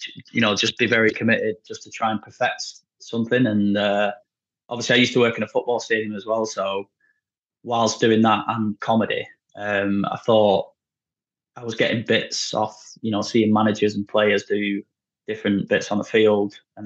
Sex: male